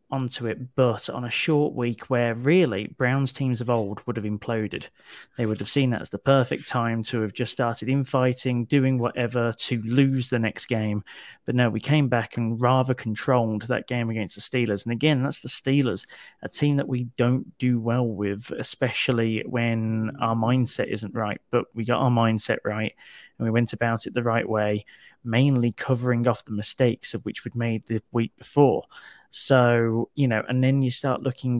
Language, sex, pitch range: English, male, 115-130 Hz